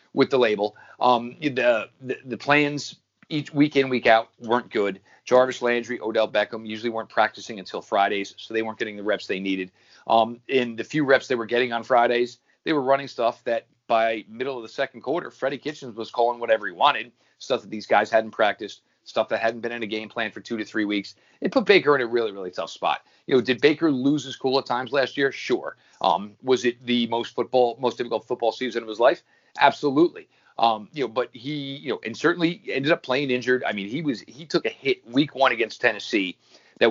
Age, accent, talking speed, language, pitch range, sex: 40-59, American, 230 wpm, English, 115-135 Hz, male